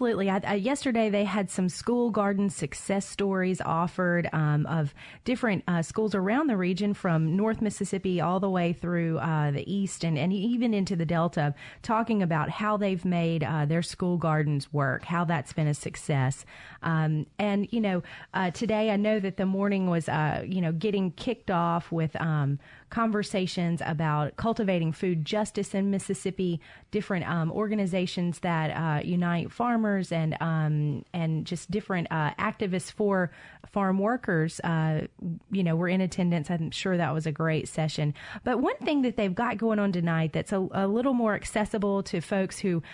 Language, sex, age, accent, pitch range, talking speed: English, female, 30-49, American, 160-205 Hz, 175 wpm